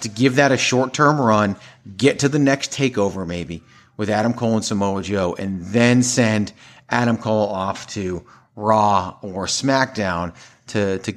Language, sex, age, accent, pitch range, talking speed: English, male, 30-49, American, 95-125 Hz, 160 wpm